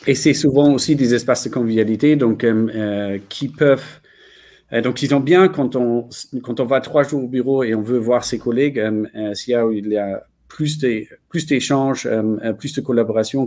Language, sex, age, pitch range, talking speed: French, male, 40-59, 110-140 Hz, 215 wpm